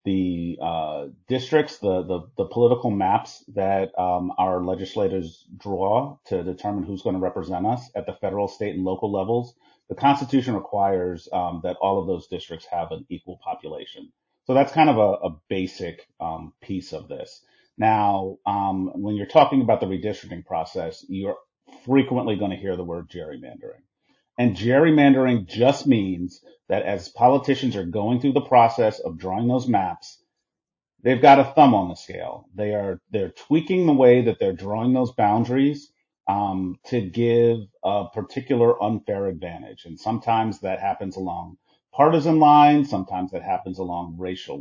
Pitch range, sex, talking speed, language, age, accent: 95-125 Hz, male, 160 wpm, English, 40-59, American